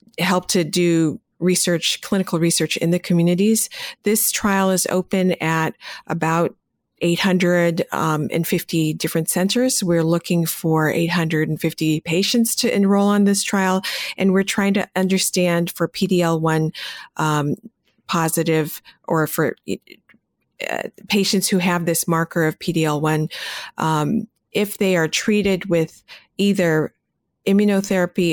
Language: English